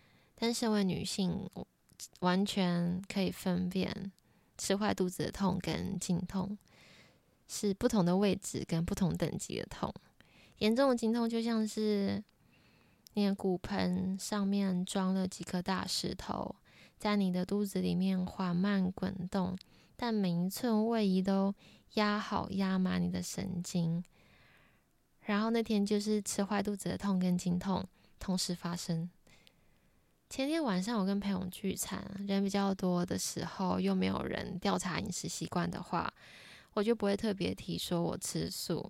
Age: 20-39